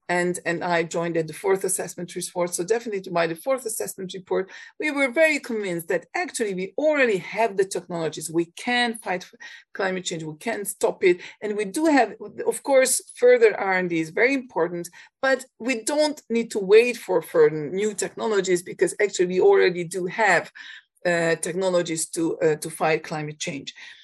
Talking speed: 180 wpm